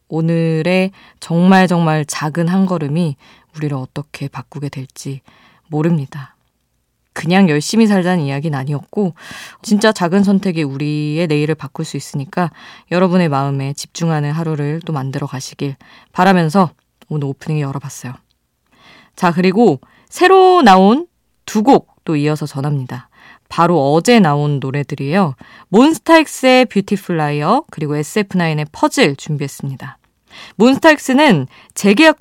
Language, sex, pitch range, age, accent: Korean, female, 150-220 Hz, 20-39, native